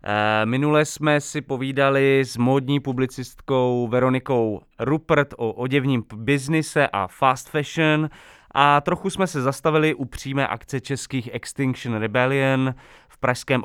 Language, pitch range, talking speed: English, 120-145 Hz, 125 wpm